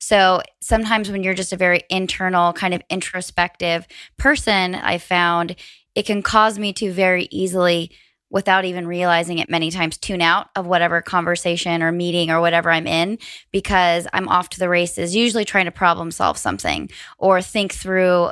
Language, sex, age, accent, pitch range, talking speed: English, female, 20-39, American, 175-195 Hz, 175 wpm